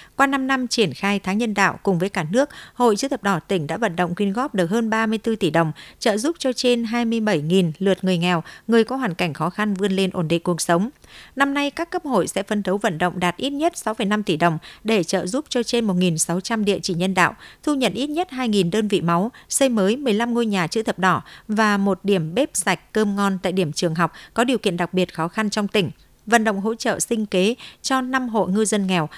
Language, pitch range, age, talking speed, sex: Vietnamese, 185-235 Hz, 60-79, 250 wpm, female